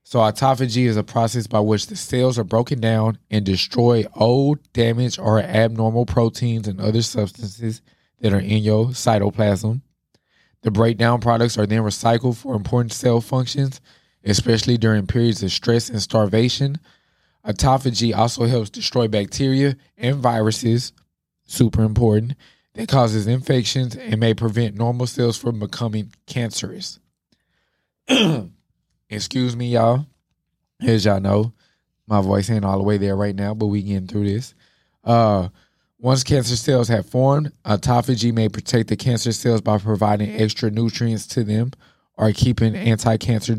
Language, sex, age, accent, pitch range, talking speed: English, male, 20-39, American, 105-120 Hz, 145 wpm